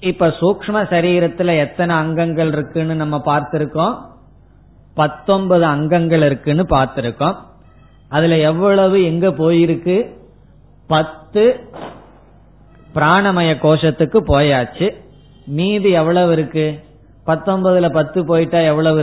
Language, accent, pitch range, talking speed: Tamil, native, 145-180 Hz, 85 wpm